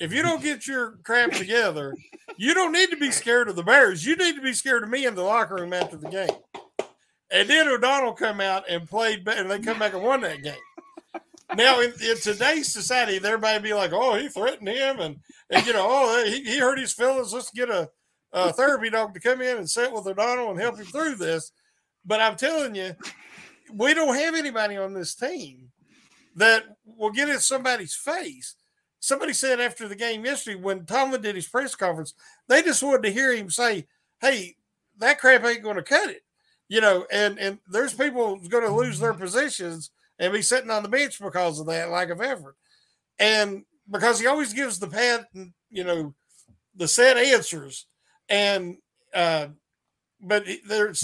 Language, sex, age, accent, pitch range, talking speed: English, male, 50-69, American, 195-265 Hz, 200 wpm